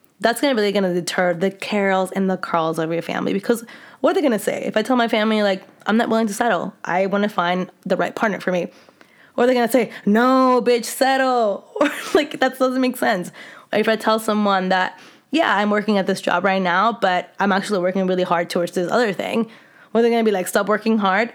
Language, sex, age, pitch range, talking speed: English, female, 20-39, 180-235 Hz, 230 wpm